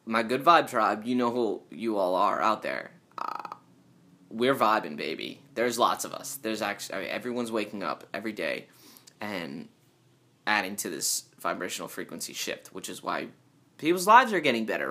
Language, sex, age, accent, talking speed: English, male, 20-39, American, 175 wpm